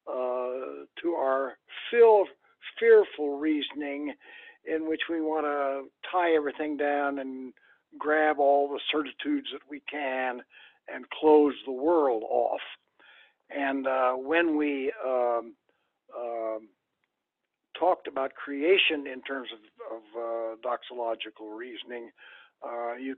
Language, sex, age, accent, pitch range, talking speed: English, male, 60-79, American, 120-150 Hz, 115 wpm